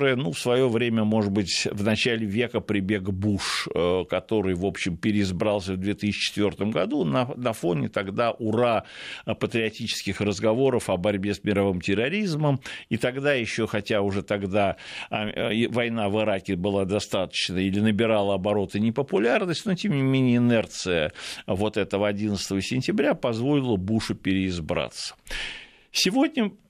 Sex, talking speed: male, 130 wpm